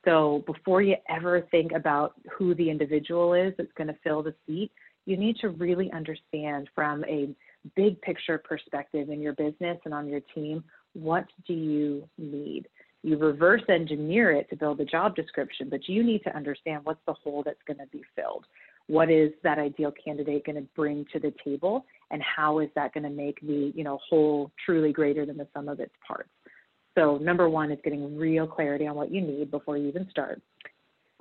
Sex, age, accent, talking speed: female, 30-49, American, 195 wpm